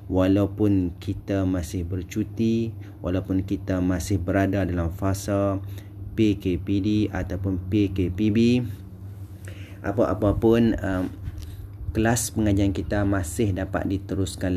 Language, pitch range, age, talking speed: Malay, 95-105 Hz, 30-49, 95 wpm